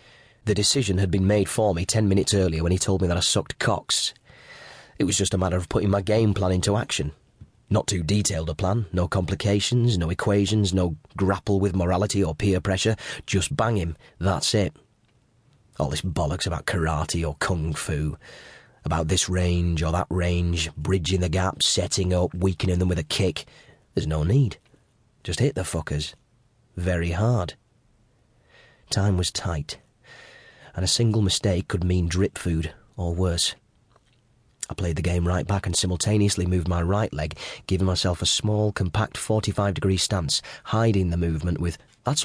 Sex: male